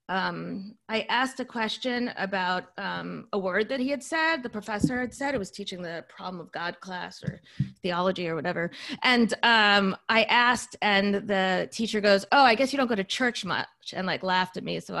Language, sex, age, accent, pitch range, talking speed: English, female, 30-49, American, 185-240 Hz, 210 wpm